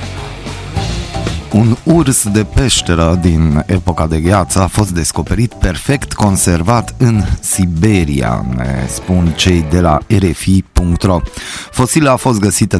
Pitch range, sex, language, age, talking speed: 80-105 Hz, male, Romanian, 30-49, 115 wpm